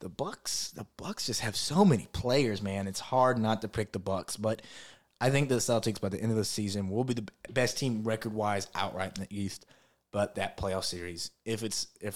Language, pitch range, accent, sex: English, 95-115 Hz, American, male